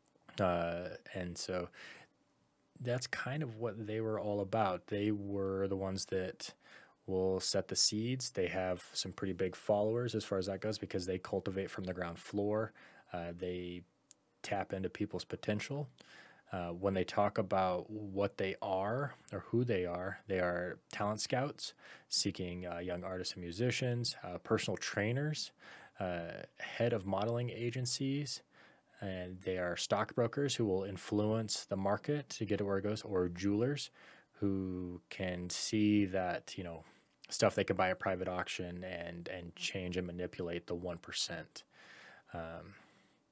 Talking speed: 155 wpm